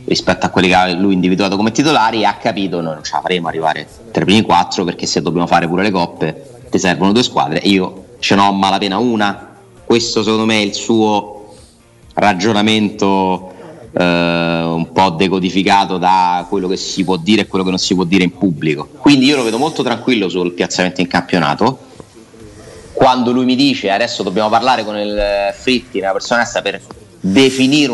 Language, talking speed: Italian, 185 wpm